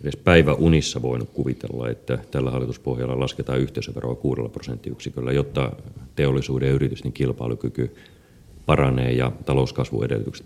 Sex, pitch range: male, 65-80 Hz